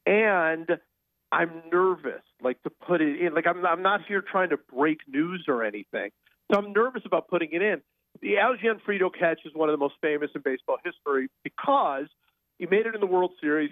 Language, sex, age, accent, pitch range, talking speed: English, male, 40-59, American, 150-220 Hz, 205 wpm